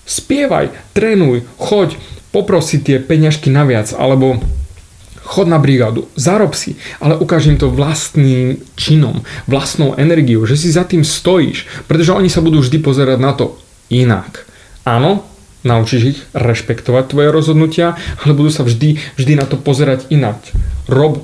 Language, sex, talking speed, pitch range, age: Slovak, male, 140 wpm, 120-155 Hz, 30-49